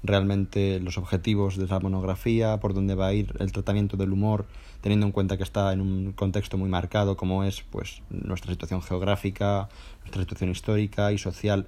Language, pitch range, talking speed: Spanish, 95-105 Hz, 185 wpm